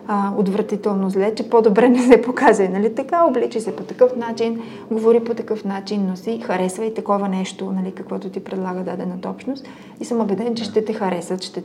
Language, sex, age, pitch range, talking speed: Bulgarian, female, 30-49, 190-230 Hz, 195 wpm